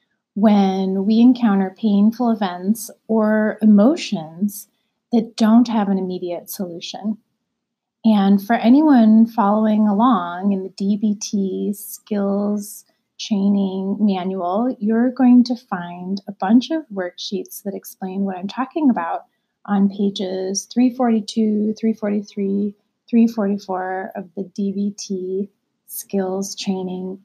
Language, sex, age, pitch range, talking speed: English, female, 30-49, 195-230 Hz, 105 wpm